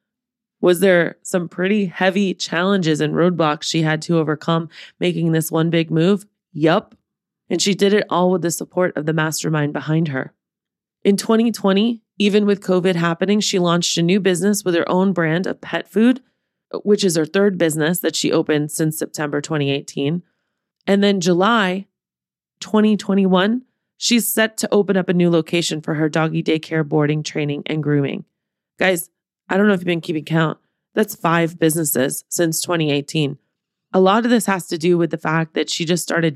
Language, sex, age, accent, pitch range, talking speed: English, female, 20-39, American, 160-200 Hz, 180 wpm